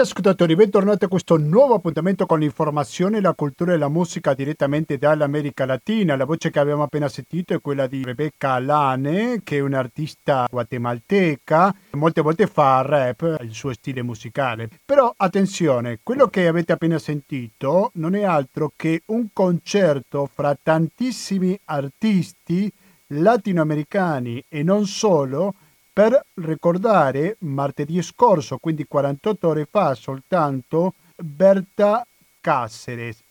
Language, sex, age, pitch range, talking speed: Italian, male, 50-69, 140-190 Hz, 130 wpm